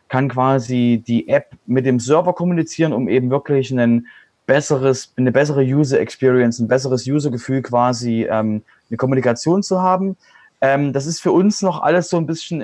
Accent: German